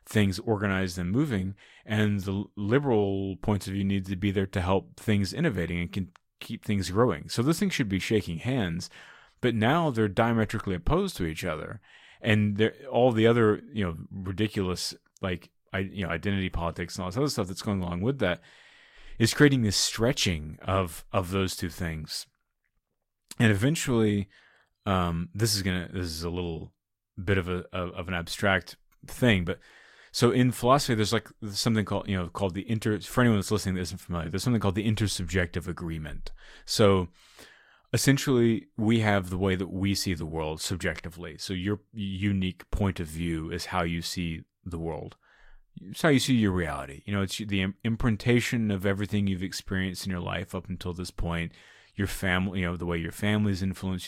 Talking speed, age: 190 wpm, 30-49